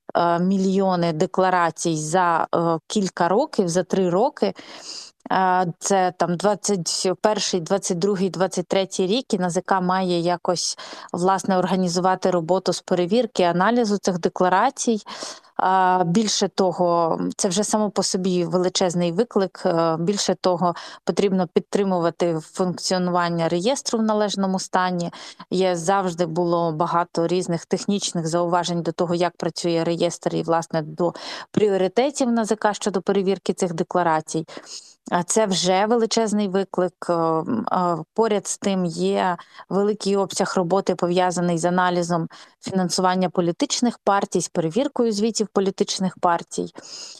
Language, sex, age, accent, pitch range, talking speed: Ukrainian, female, 20-39, native, 175-200 Hz, 115 wpm